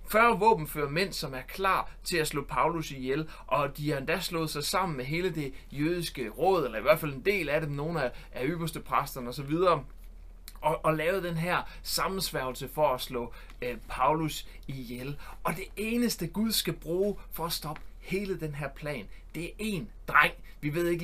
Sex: male